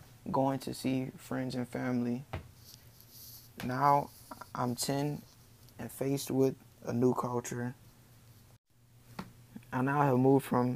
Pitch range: 120-130 Hz